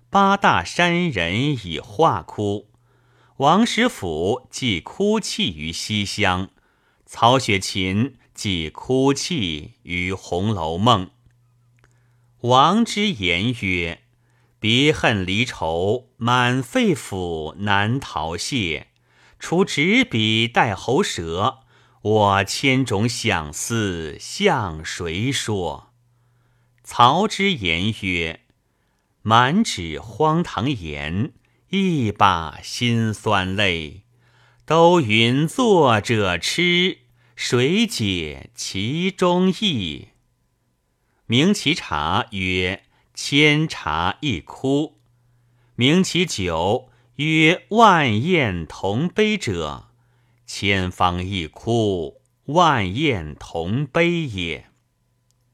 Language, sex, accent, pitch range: Chinese, male, native, 100-150 Hz